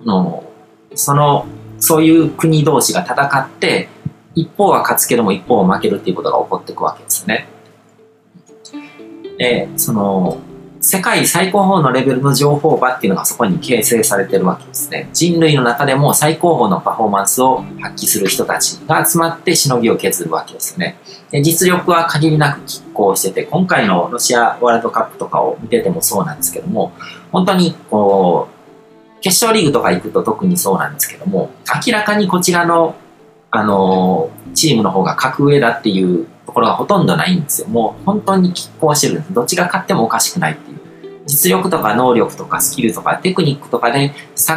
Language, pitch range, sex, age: Japanese, 120-175 Hz, male, 40-59